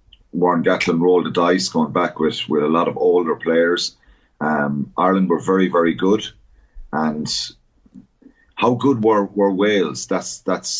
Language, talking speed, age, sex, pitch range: English, 150 wpm, 30-49, male, 85-100 Hz